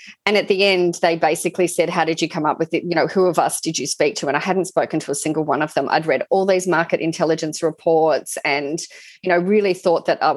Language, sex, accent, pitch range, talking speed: English, female, Australian, 160-185 Hz, 270 wpm